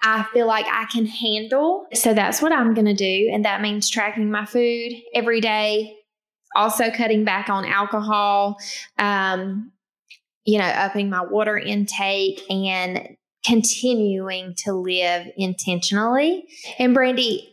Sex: female